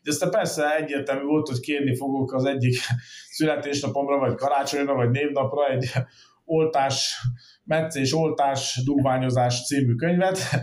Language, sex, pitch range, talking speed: Hungarian, male, 120-150 Hz, 125 wpm